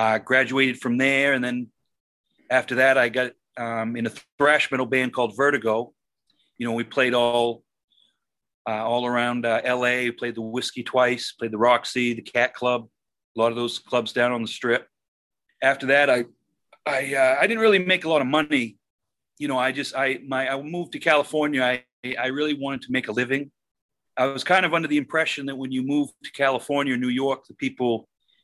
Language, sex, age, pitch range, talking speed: English, male, 40-59, 120-135 Hz, 205 wpm